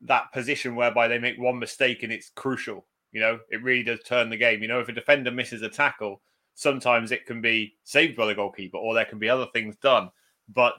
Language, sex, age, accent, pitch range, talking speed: English, male, 30-49, British, 115-145 Hz, 235 wpm